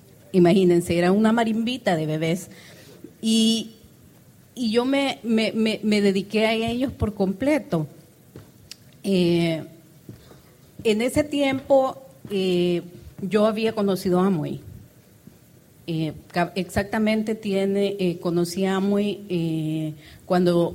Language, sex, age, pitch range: Spanish, female, 40-59, 170-215 Hz